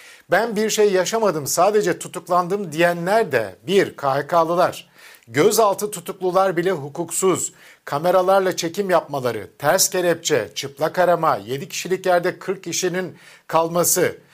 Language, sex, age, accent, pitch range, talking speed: Turkish, male, 50-69, native, 155-185 Hz, 115 wpm